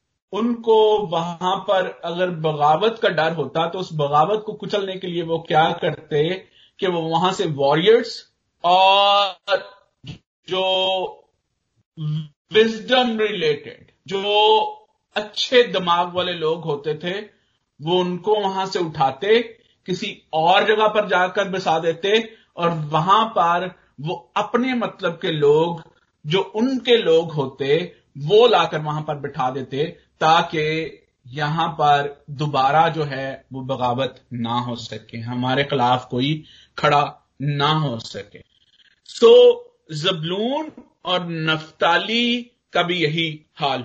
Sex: male